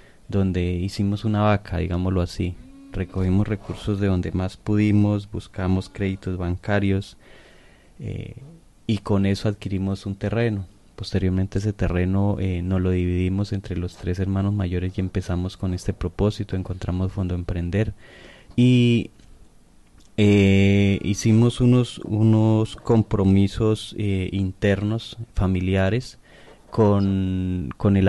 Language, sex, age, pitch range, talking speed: Spanish, male, 20-39, 90-105 Hz, 115 wpm